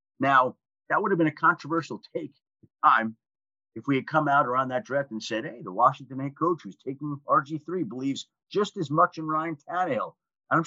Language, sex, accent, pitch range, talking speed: English, male, American, 135-190 Hz, 195 wpm